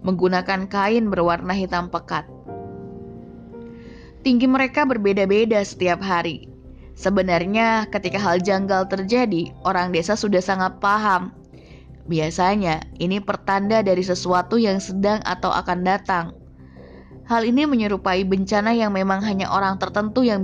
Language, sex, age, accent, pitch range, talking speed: Indonesian, female, 20-39, native, 175-210 Hz, 115 wpm